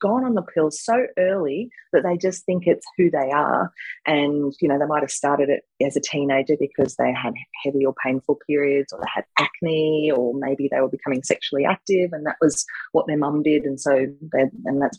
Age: 30-49